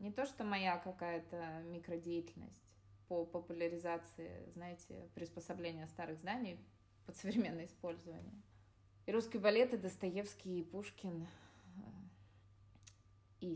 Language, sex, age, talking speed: Russian, female, 20-39, 100 wpm